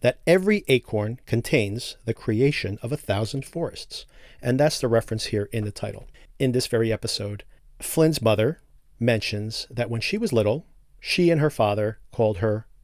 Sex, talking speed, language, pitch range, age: male, 170 wpm, English, 110-145 Hz, 40-59